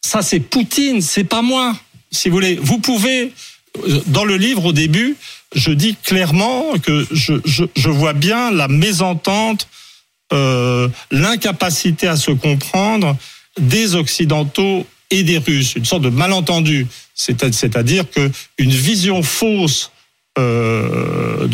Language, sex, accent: French, male, French